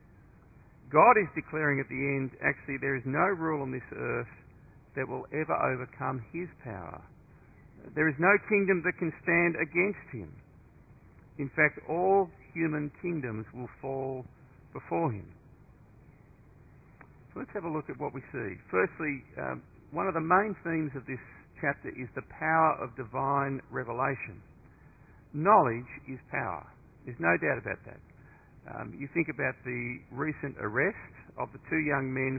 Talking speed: 155 wpm